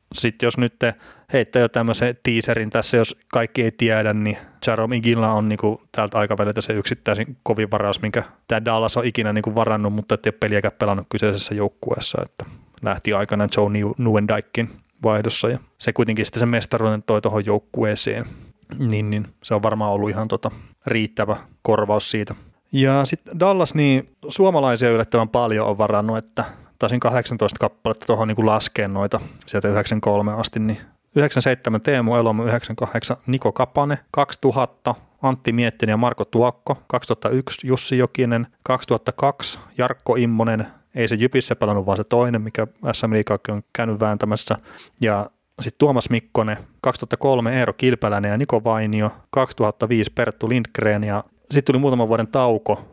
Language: Finnish